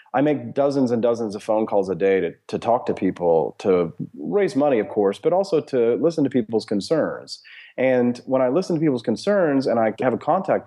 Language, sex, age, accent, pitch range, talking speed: English, male, 30-49, American, 100-130 Hz, 220 wpm